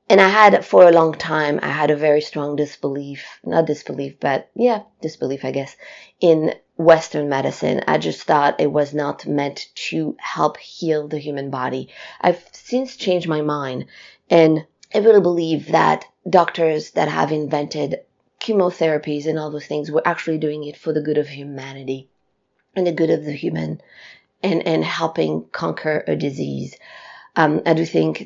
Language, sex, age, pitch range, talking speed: English, female, 30-49, 150-175 Hz, 170 wpm